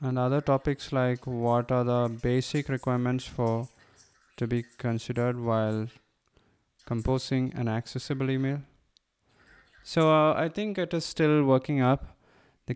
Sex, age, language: male, 20-39, English